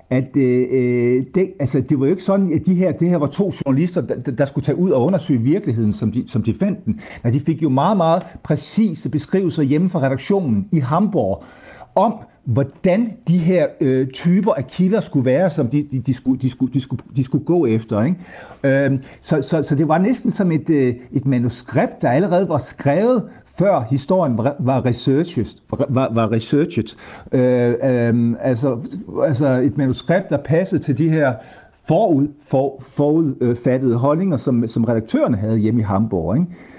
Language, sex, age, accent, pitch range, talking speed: Danish, male, 60-79, native, 120-165 Hz, 175 wpm